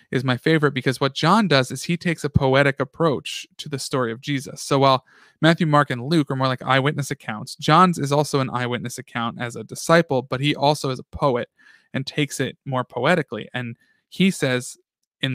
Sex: male